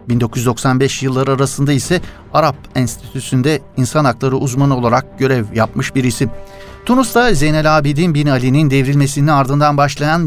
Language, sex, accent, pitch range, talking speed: Turkish, male, native, 120-150 Hz, 130 wpm